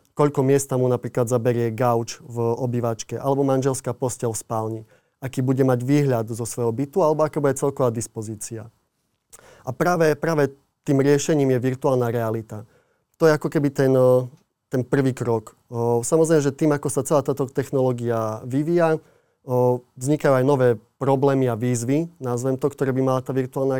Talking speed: 160 wpm